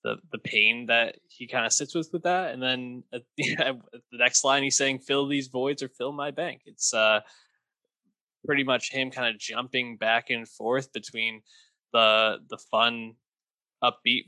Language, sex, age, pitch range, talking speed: English, male, 20-39, 110-140 Hz, 185 wpm